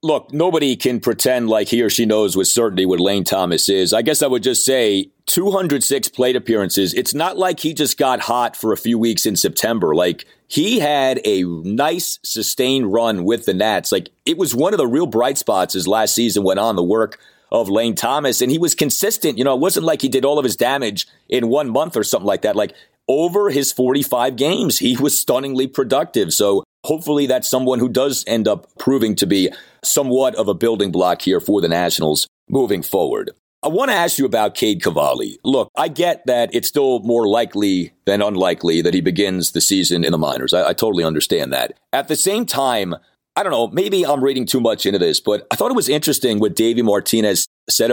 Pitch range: 100-140 Hz